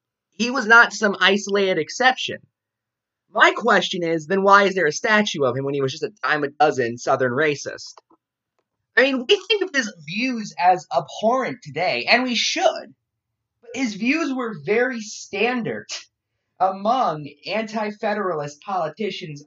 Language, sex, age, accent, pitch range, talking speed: English, male, 20-39, American, 140-215 Hz, 150 wpm